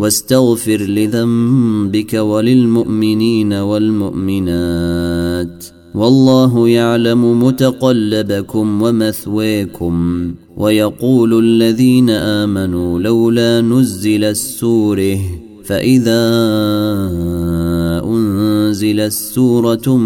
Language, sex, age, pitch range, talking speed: Arabic, male, 30-49, 100-115 Hz, 50 wpm